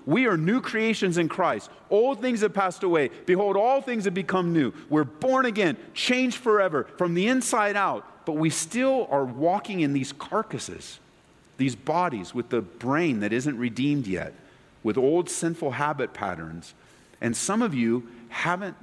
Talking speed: 170 wpm